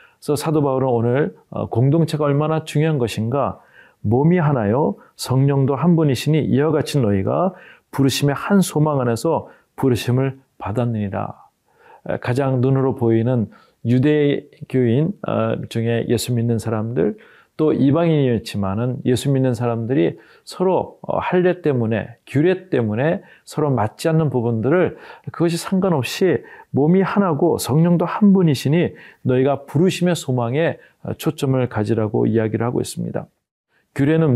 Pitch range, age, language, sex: 120-155 Hz, 40-59, Korean, male